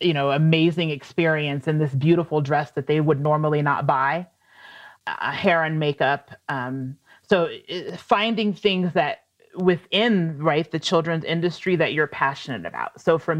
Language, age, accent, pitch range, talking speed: English, 30-49, American, 150-180 Hz, 150 wpm